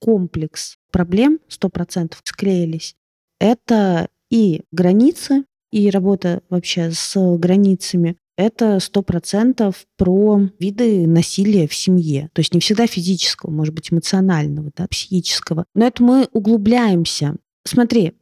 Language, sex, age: Russian, female, 20-39